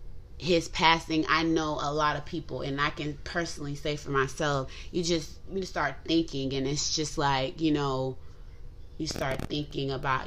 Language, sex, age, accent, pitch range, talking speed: English, female, 20-39, American, 140-165 Hz, 175 wpm